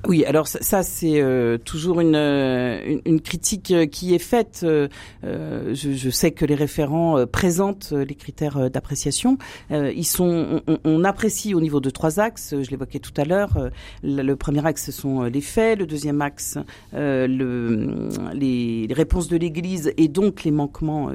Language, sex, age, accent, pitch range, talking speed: French, female, 40-59, French, 140-180 Hz, 175 wpm